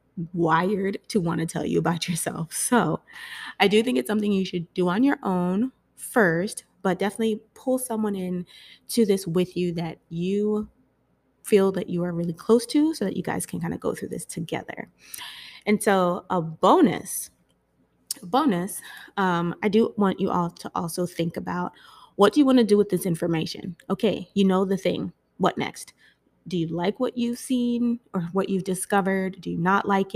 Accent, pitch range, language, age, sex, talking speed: American, 170-210 Hz, English, 20-39, female, 190 wpm